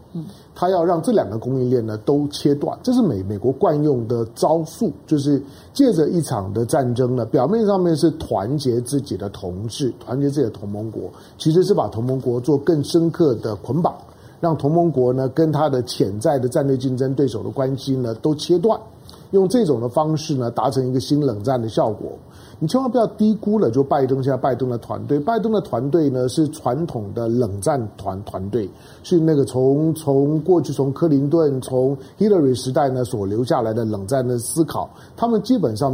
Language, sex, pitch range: Chinese, male, 120-165 Hz